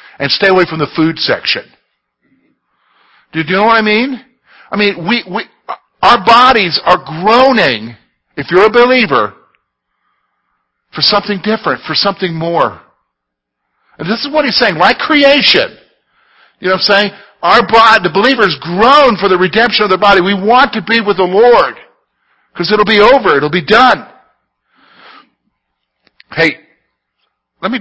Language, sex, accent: English, male, American